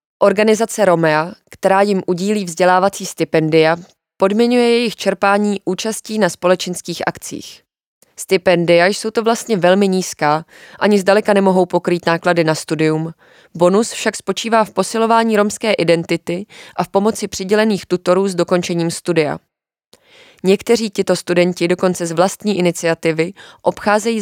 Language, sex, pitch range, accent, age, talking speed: Czech, female, 170-200 Hz, native, 20-39, 125 wpm